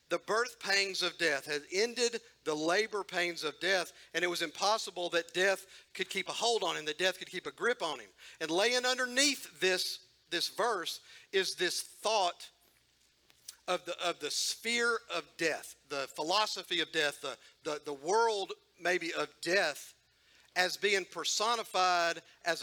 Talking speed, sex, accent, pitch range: 165 wpm, male, American, 170-225 Hz